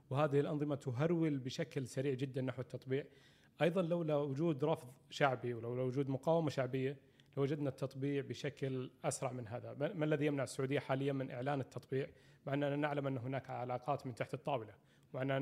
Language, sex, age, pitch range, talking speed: Arabic, male, 30-49, 130-150 Hz, 165 wpm